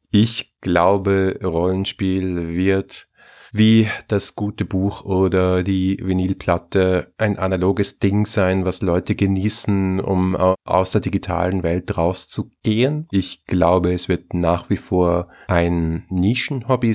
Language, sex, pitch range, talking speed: German, male, 85-95 Hz, 115 wpm